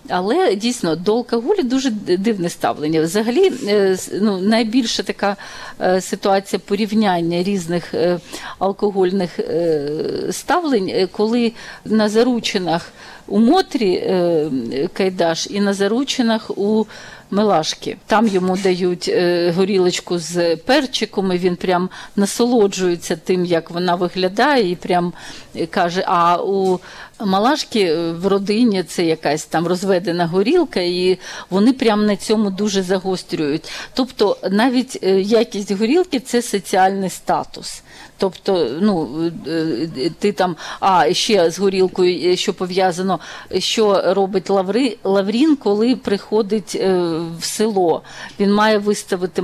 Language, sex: Ukrainian, female